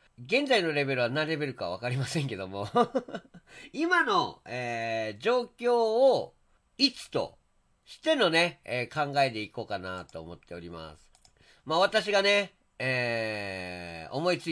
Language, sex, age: Japanese, male, 40-59